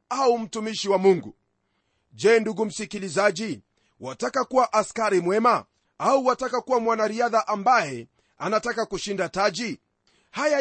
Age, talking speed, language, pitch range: 40-59, 115 wpm, Swahili, 195-255 Hz